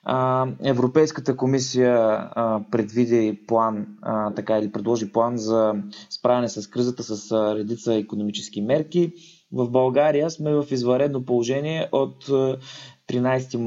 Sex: male